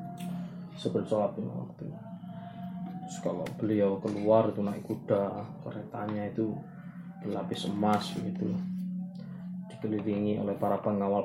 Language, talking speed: Malay, 90 wpm